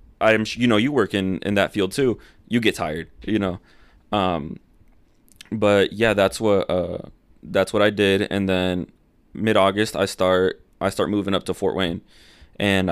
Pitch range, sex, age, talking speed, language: 95-105 Hz, male, 20-39, 180 wpm, English